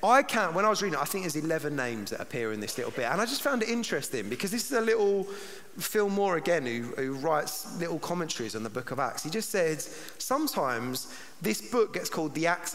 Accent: British